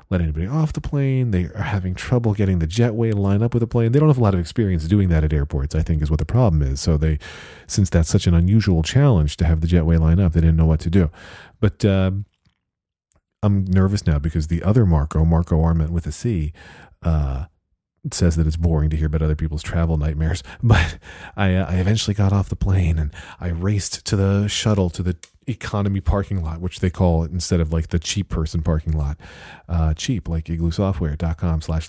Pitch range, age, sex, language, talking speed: 80-105 Hz, 40-59, male, English, 225 wpm